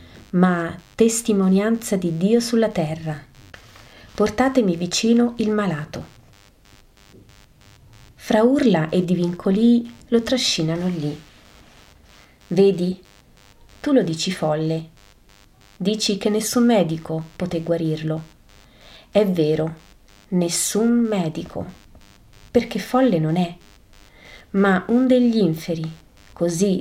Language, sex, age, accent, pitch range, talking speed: Italian, female, 30-49, native, 160-215 Hz, 90 wpm